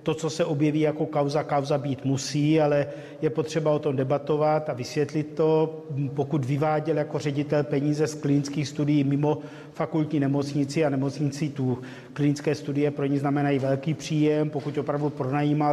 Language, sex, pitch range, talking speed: Czech, male, 145-155 Hz, 160 wpm